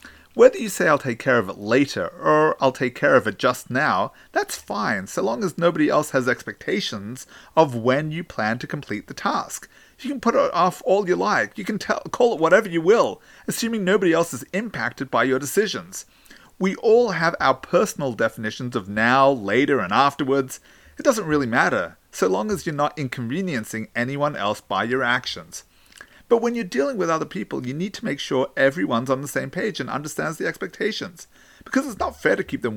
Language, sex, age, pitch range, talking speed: English, male, 30-49, 125-195 Hz, 205 wpm